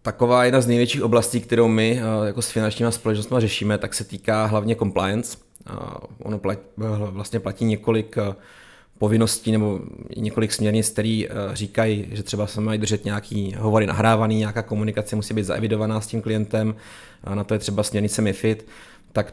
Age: 30-49